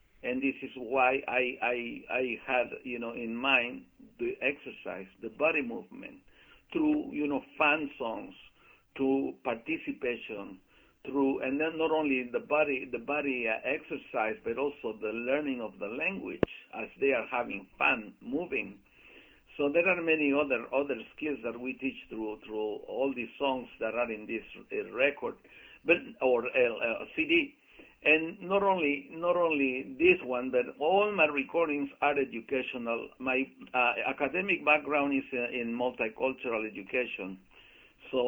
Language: English